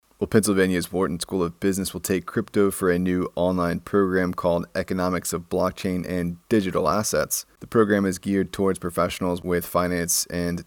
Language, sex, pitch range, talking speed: English, male, 85-95 Hz, 170 wpm